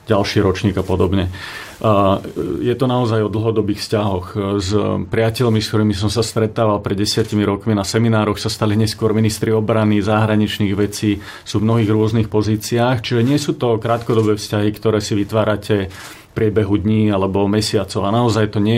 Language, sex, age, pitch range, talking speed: Slovak, male, 30-49, 105-115 Hz, 165 wpm